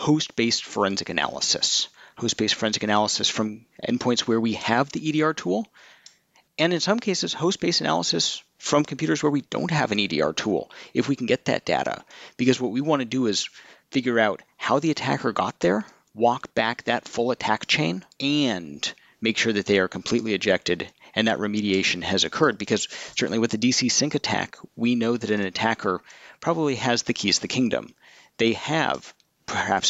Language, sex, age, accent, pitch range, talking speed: English, male, 40-59, American, 105-135 Hz, 180 wpm